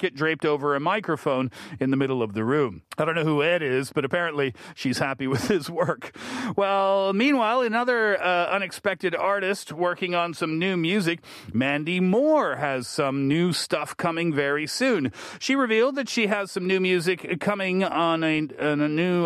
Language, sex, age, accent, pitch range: Korean, male, 40-59, American, 140-185 Hz